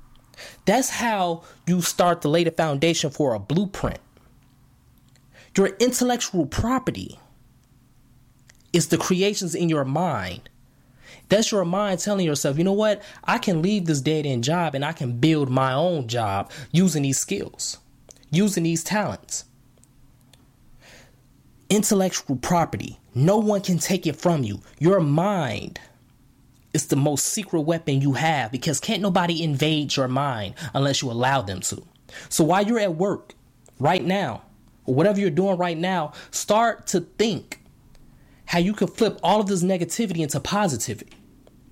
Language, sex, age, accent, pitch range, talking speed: English, male, 20-39, American, 130-195 Hz, 150 wpm